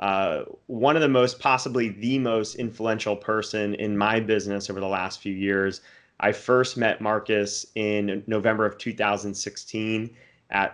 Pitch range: 100-110 Hz